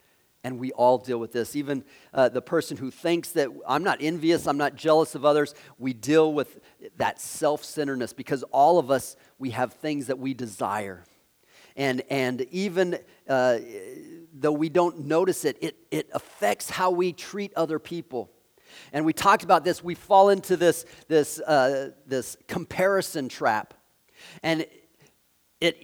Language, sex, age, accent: English, male, 40-59, American